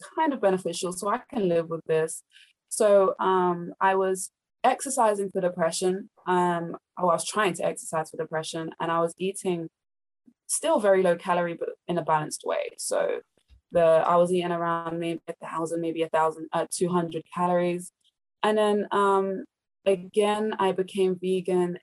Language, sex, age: Persian, female, 20-39